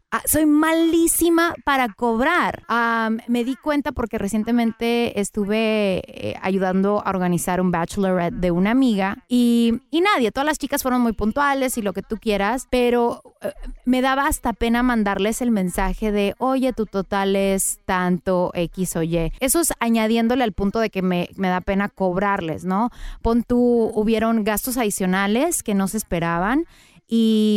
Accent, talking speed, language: Mexican, 165 wpm, Spanish